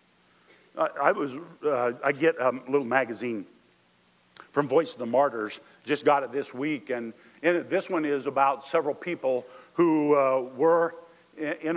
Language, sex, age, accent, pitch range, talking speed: English, male, 50-69, American, 120-145 Hz, 160 wpm